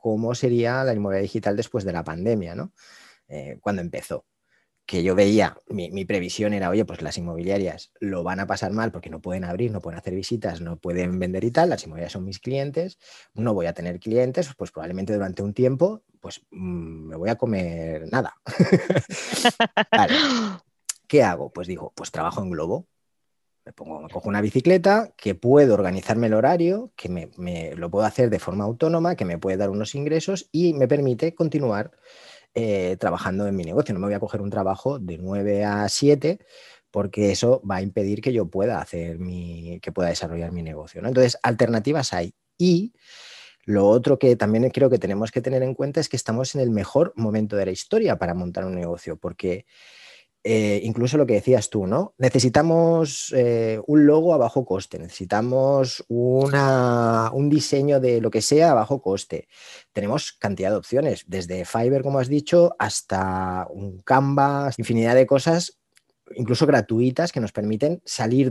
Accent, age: Spanish, 30-49